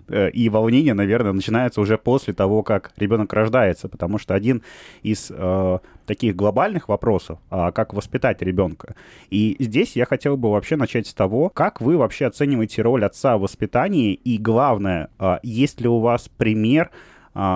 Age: 20-39